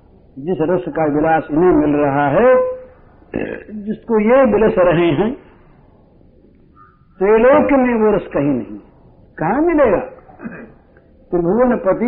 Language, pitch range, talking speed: Hindi, 155-220 Hz, 110 wpm